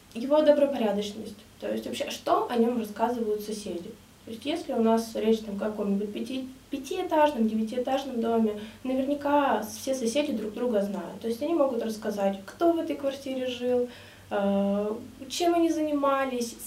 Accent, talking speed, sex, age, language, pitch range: native, 150 wpm, female, 20-39, Russian, 215-270 Hz